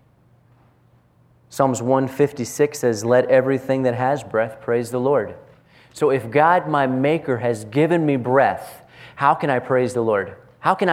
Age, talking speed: 30-49, 155 wpm